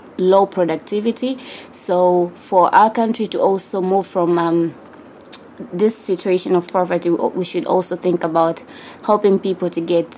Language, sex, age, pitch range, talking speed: English, female, 20-39, 175-200 Hz, 140 wpm